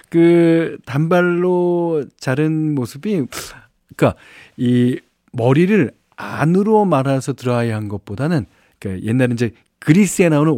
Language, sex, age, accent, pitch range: Korean, male, 40-59, native, 115-160 Hz